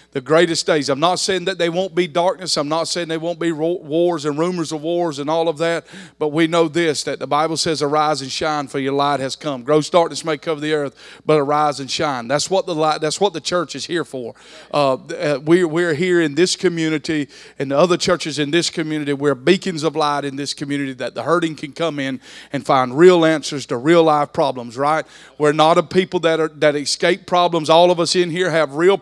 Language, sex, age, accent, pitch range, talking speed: English, male, 40-59, American, 150-185 Hz, 240 wpm